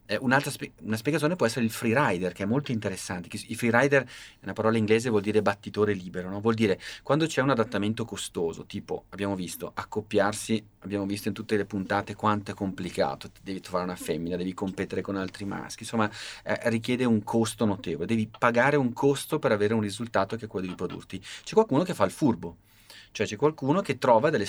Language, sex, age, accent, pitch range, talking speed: Italian, male, 30-49, native, 95-115 Hz, 205 wpm